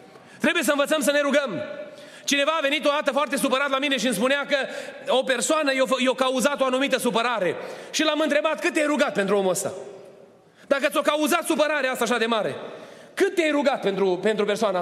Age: 30-49